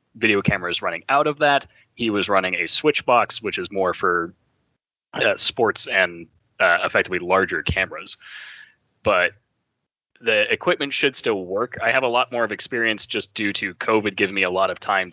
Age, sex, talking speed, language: 20-39, male, 185 wpm, English